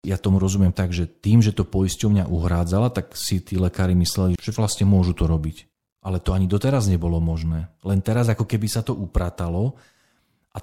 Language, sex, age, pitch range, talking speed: Slovak, male, 40-59, 90-110 Hz, 190 wpm